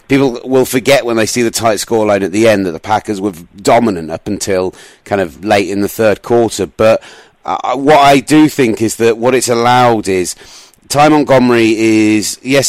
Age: 30-49